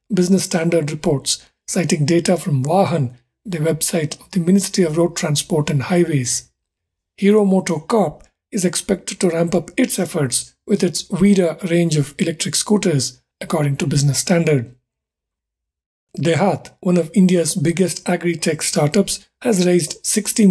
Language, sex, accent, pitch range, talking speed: English, male, Indian, 150-190 Hz, 140 wpm